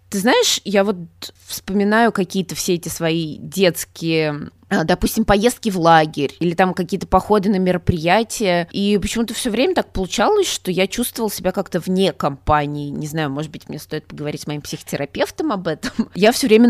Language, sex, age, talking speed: Russian, female, 20-39, 175 wpm